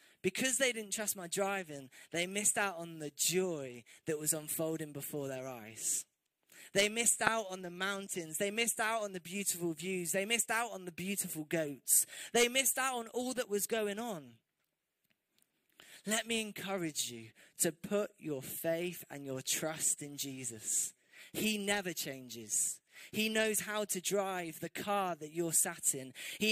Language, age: English, 20-39